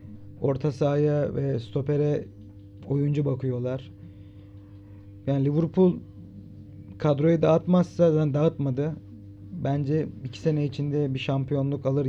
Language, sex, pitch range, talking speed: Turkish, male, 100-150 Hz, 90 wpm